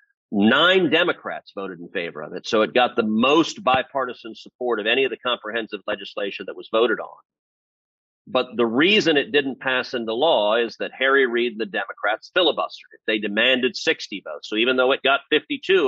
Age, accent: 40-59, American